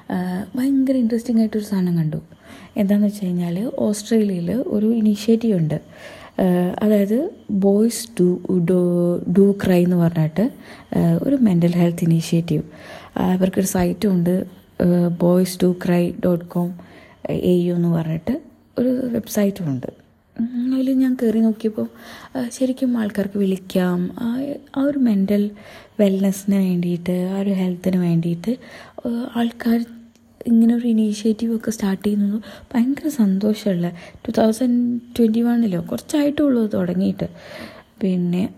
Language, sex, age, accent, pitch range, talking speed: Malayalam, female, 20-39, native, 180-230 Hz, 110 wpm